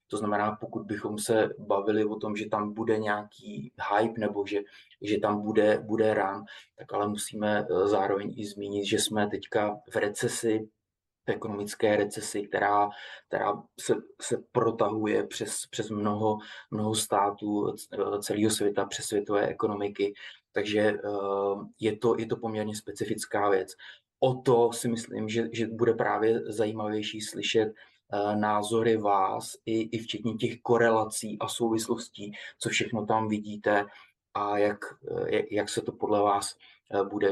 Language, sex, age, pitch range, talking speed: Slovak, male, 20-39, 100-110 Hz, 145 wpm